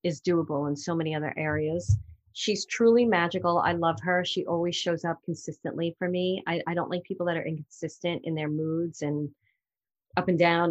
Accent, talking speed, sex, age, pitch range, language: American, 195 wpm, female, 30-49, 165-200 Hz, English